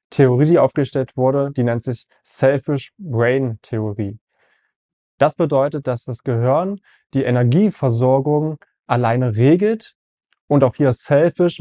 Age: 20-39